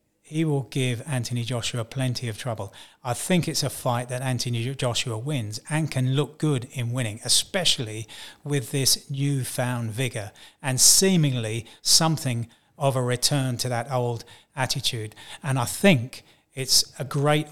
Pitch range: 115-130 Hz